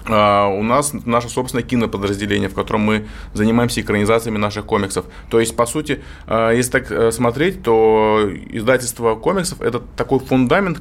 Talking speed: 145 wpm